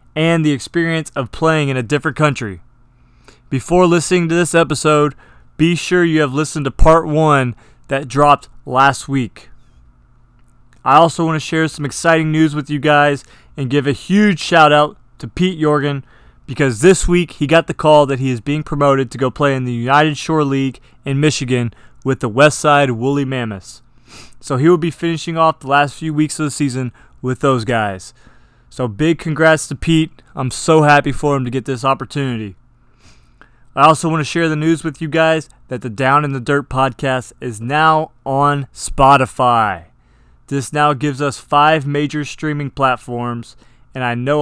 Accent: American